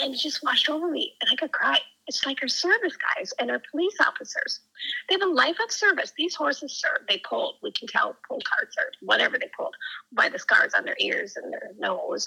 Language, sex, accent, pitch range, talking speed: English, female, American, 275-355 Hz, 235 wpm